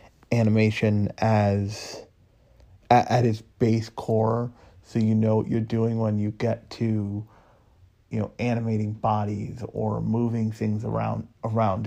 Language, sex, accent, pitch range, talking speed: English, male, American, 105-120 Hz, 130 wpm